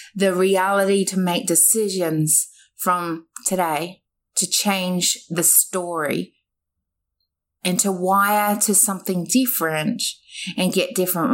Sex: female